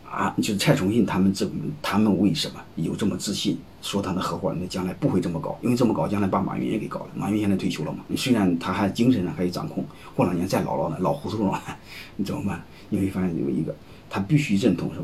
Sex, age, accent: male, 30-49, native